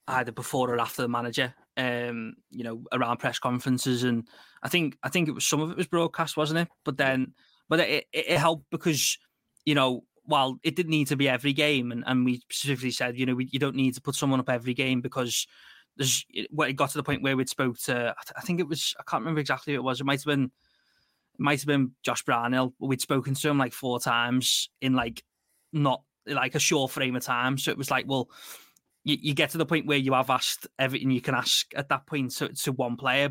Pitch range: 125-140 Hz